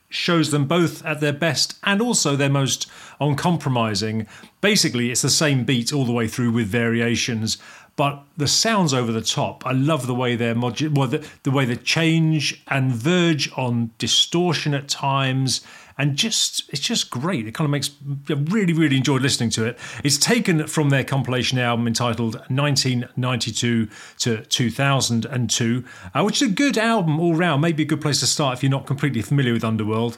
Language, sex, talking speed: English, male, 185 wpm